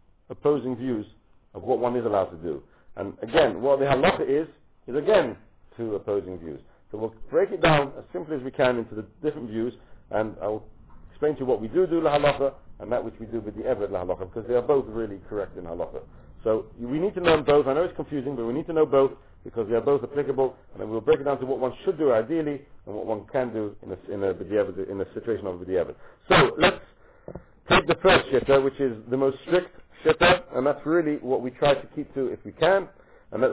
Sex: male